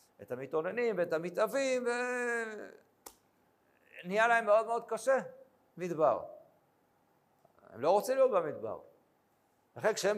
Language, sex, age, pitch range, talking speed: Hebrew, male, 50-69, 180-275 Hz, 105 wpm